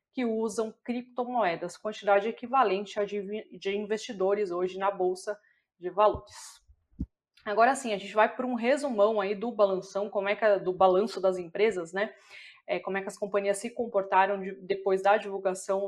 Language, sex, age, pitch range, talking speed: Portuguese, female, 20-39, 195-220 Hz, 170 wpm